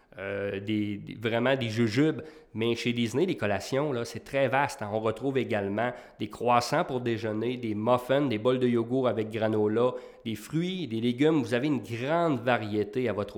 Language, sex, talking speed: English, male, 170 wpm